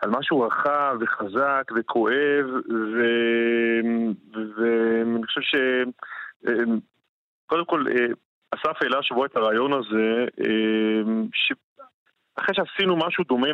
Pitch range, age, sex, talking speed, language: 115-135 Hz, 30-49, male, 100 wpm, Hebrew